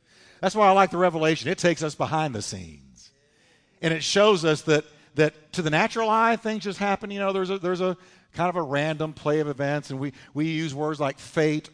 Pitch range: 130-185 Hz